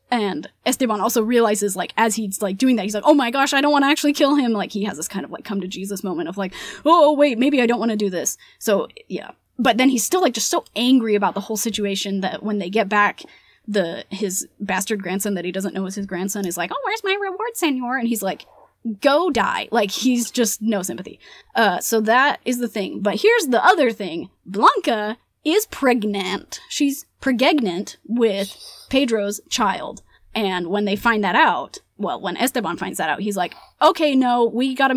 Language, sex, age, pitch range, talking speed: English, female, 20-39, 205-265 Hz, 220 wpm